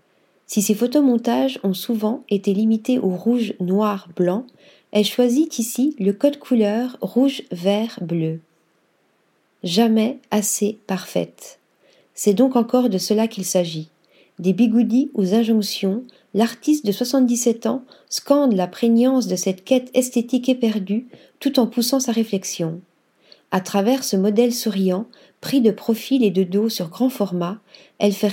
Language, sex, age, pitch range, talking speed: French, female, 40-59, 195-245 Hz, 140 wpm